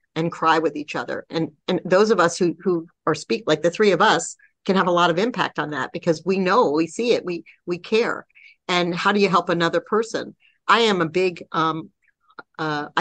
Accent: American